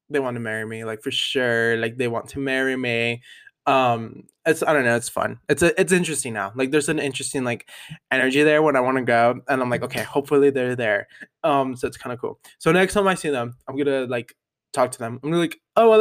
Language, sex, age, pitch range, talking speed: English, male, 20-39, 125-155 Hz, 260 wpm